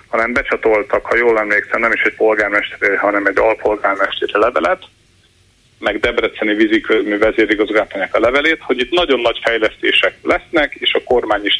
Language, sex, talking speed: Hungarian, male, 145 wpm